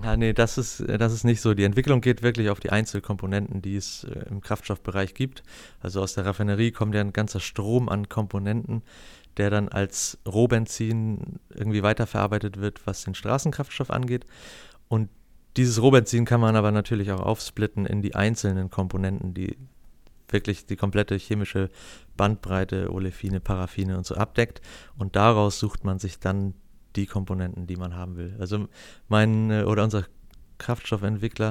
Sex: male